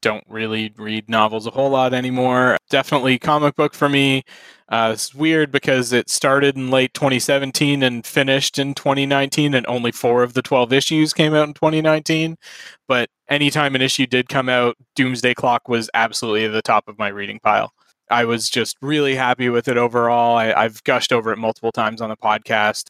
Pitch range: 115-135 Hz